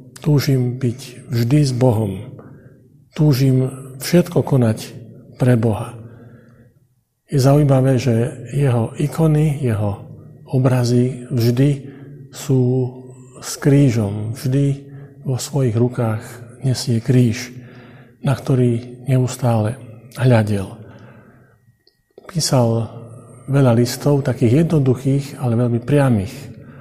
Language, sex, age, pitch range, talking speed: Slovak, male, 50-69, 120-135 Hz, 85 wpm